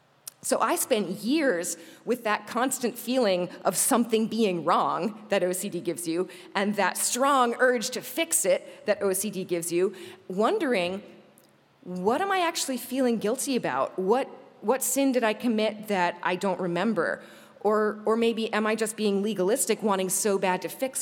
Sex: female